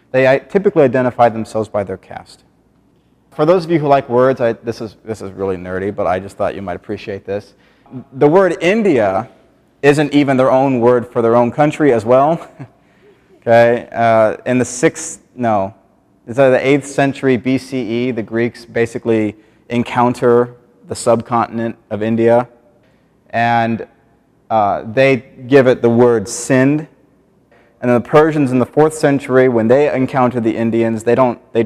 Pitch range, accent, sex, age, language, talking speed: 110-135 Hz, American, male, 30-49, English, 165 wpm